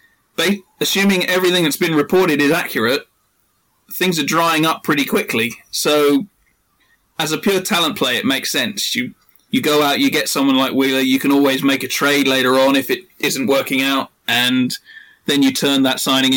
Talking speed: 185 wpm